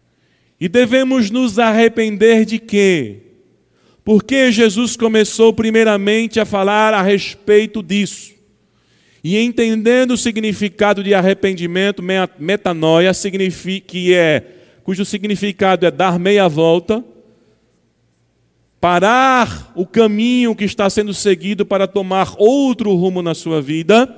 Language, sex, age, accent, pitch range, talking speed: Portuguese, male, 40-59, Brazilian, 175-220 Hz, 105 wpm